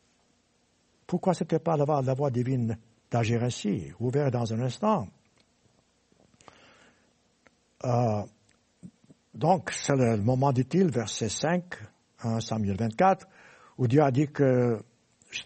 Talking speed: 120 wpm